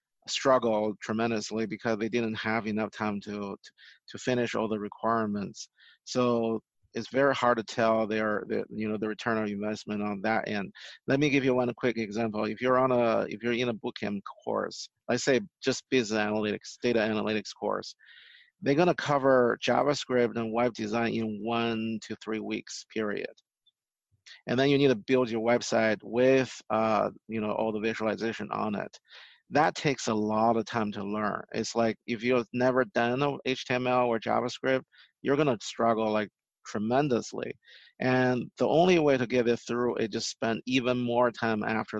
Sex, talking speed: male, 180 wpm